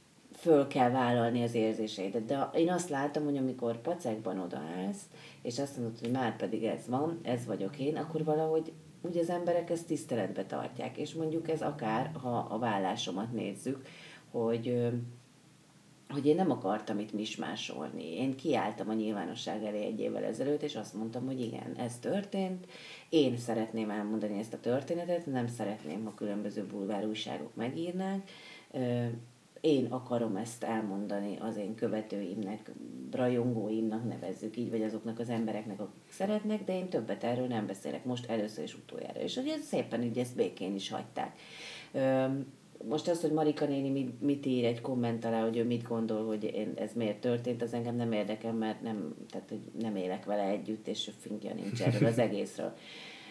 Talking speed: 165 wpm